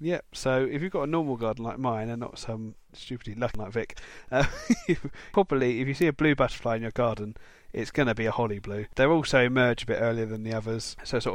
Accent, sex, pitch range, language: British, male, 115-145 Hz, English